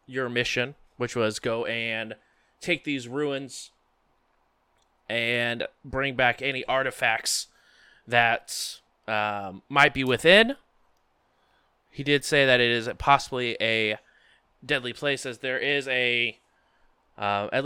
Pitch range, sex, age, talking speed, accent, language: 110-140 Hz, male, 20-39, 120 wpm, American, English